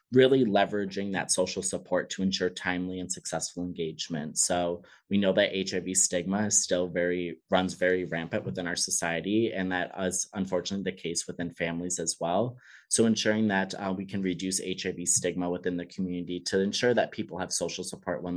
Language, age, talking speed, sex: English, 30-49, 185 wpm, male